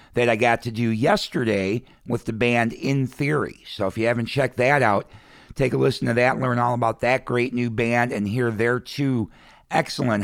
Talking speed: 205 wpm